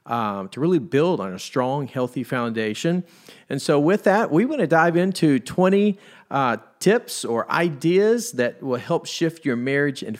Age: 40-59